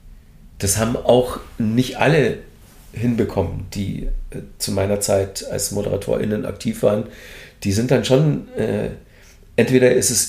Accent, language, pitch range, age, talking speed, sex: German, German, 105-125 Hz, 40-59, 135 wpm, male